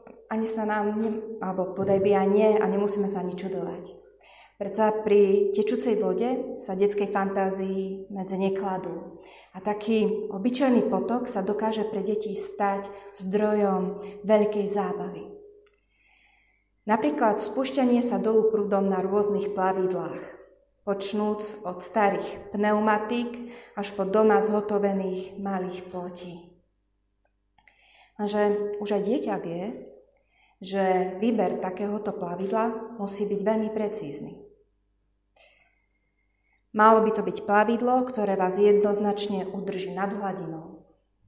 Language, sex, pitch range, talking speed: Slovak, female, 190-215 Hz, 110 wpm